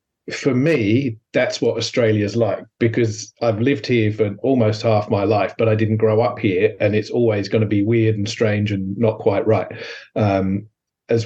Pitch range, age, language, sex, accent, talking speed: 110-125 Hz, 40-59, English, male, British, 190 wpm